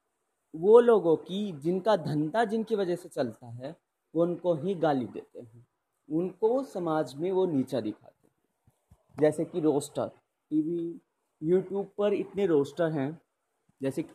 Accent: native